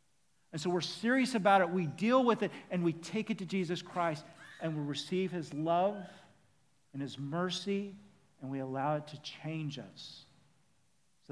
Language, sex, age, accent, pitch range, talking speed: English, male, 50-69, American, 135-175 Hz, 175 wpm